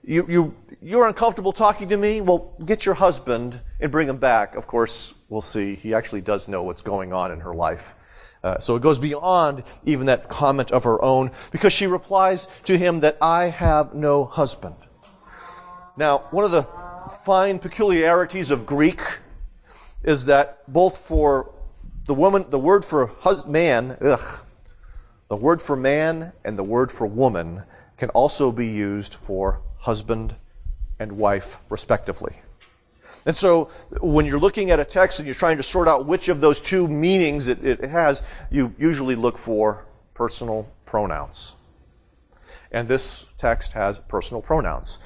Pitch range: 120-165 Hz